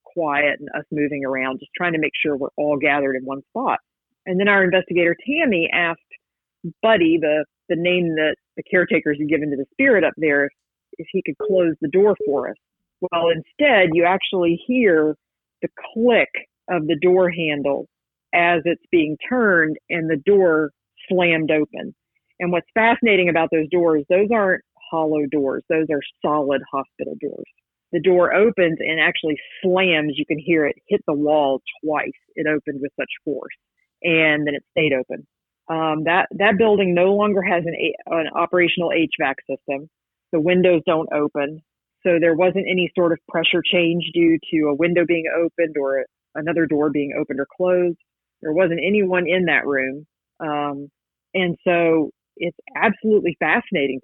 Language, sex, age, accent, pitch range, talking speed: English, female, 40-59, American, 150-180 Hz, 170 wpm